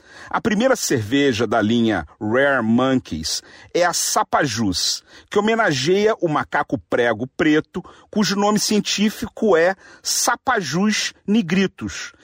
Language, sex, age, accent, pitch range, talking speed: Portuguese, male, 50-69, Brazilian, 140-205 Hz, 110 wpm